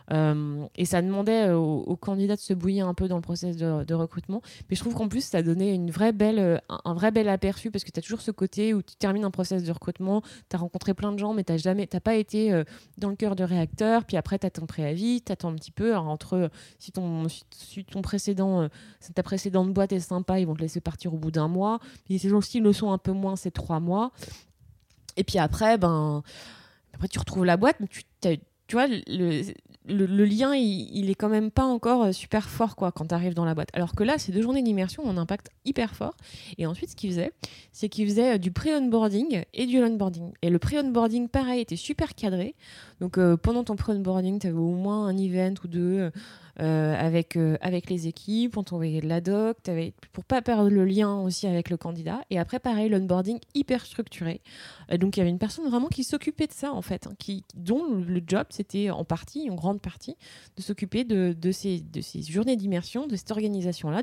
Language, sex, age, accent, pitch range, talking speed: French, female, 20-39, French, 175-215 Hz, 235 wpm